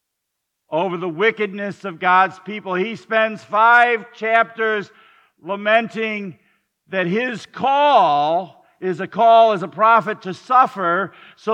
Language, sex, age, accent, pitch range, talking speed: English, male, 50-69, American, 165-225 Hz, 120 wpm